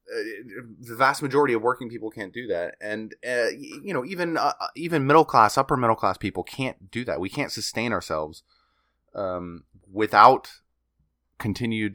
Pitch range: 95-120 Hz